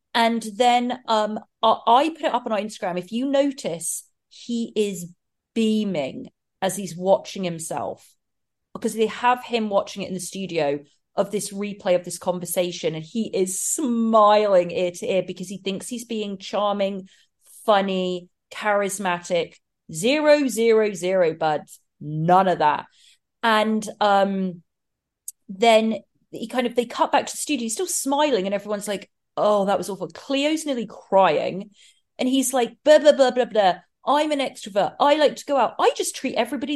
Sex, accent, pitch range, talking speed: female, British, 195-275 Hz, 165 wpm